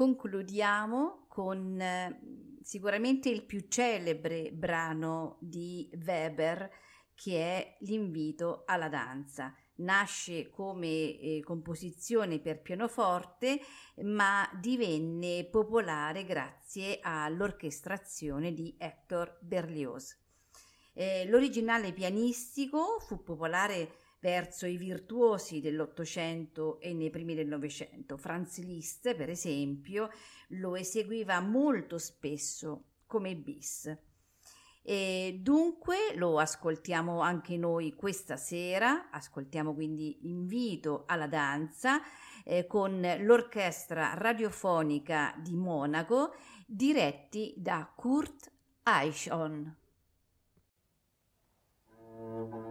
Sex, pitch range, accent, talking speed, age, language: female, 155-205 Hz, native, 85 wpm, 50-69, Italian